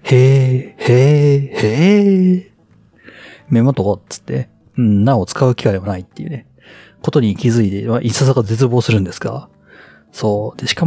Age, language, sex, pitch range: 40-59, Japanese, male, 100-140 Hz